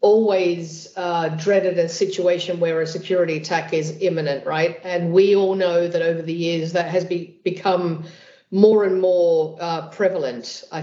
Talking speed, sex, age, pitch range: 160 wpm, female, 50-69, 160-185 Hz